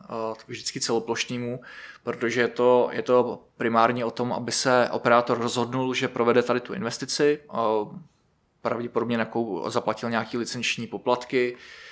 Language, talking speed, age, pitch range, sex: Czech, 130 wpm, 20-39, 115-125 Hz, male